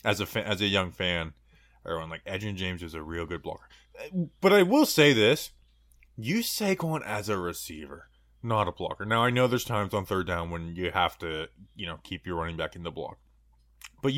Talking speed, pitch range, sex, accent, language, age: 215 wpm, 85-130 Hz, male, American, English, 20-39